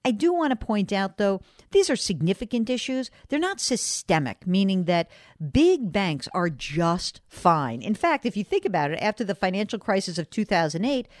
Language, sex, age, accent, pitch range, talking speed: English, female, 50-69, American, 175-240 Hz, 180 wpm